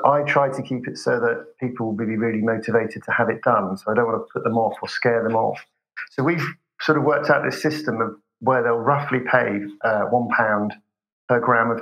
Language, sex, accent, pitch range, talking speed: English, male, British, 110-130 Hz, 235 wpm